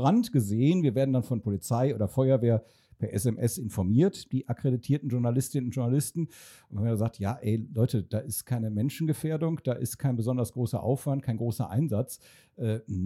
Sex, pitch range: male, 115-150 Hz